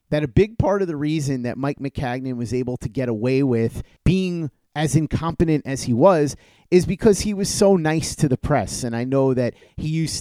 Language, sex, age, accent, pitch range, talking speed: English, male, 30-49, American, 125-160 Hz, 215 wpm